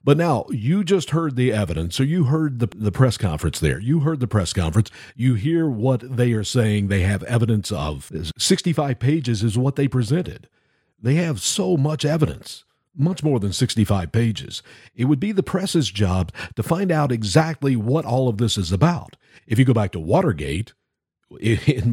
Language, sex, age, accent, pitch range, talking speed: English, male, 50-69, American, 110-155 Hz, 190 wpm